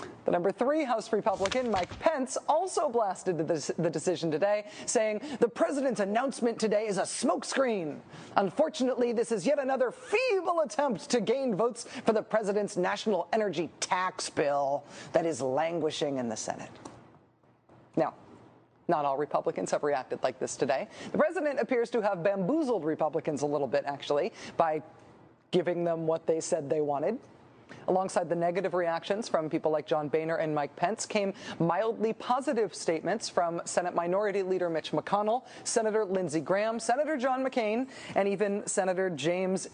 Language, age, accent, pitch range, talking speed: English, 40-59, American, 170-235 Hz, 155 wpm